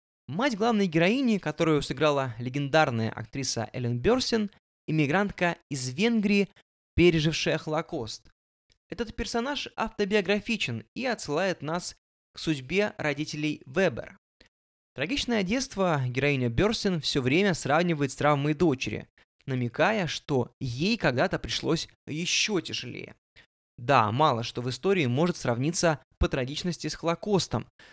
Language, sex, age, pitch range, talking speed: Russian, male, 20-39, 135-195 Hz, 110 wpm